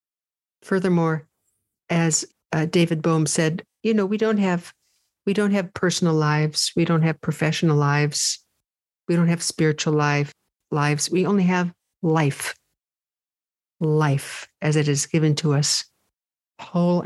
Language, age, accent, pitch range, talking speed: English, 60-79, American, 150-185 Hz, 135 wpm